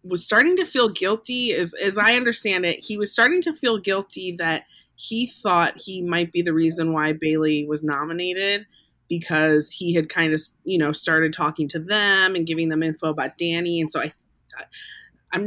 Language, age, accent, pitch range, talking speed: English, 20-39, American, 160-190 Hz, 190 wpm